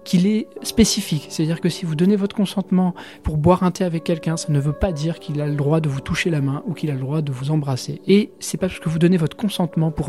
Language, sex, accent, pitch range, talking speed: French, male, French, 145-185 Hz, 285 wpm